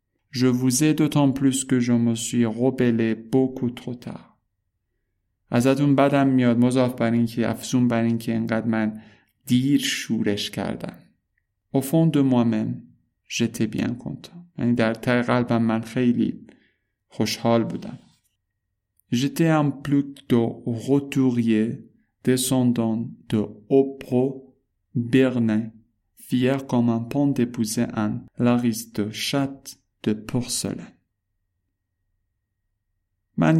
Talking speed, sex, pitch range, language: 90 wpm, male, 105-130 Hz, Persian